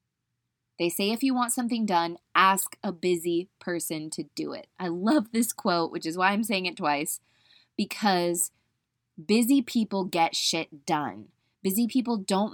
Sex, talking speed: female, 165 wpm